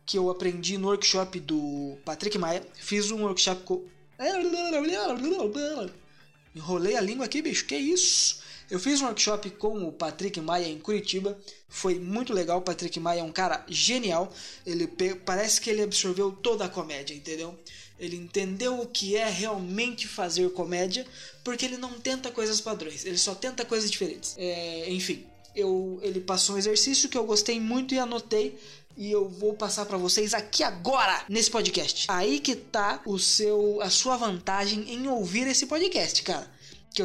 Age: 20-39